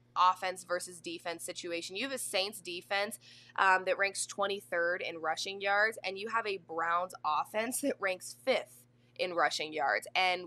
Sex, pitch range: female, 170-205 Hz